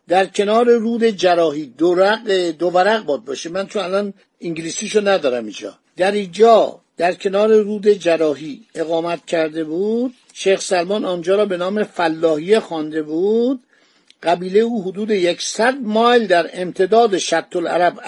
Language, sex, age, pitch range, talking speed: Persian, male, 50-69, 175-230 Hz, 135 wpm